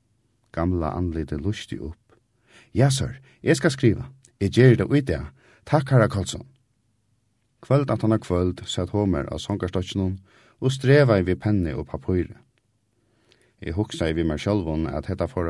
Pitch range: 90-120 Hz